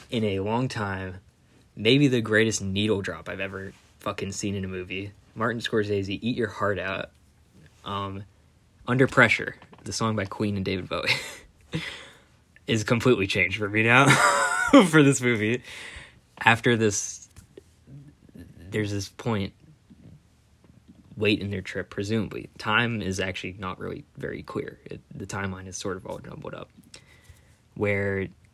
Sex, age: male, 20-39